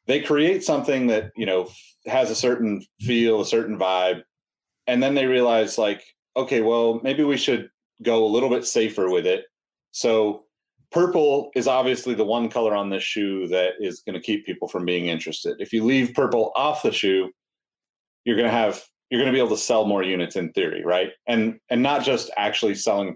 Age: 30-49